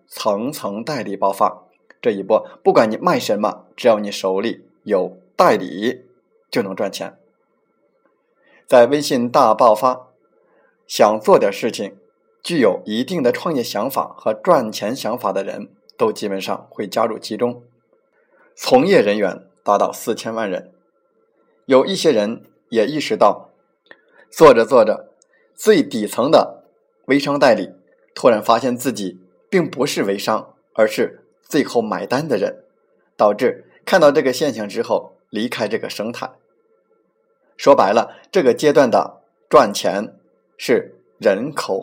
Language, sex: Chinese, male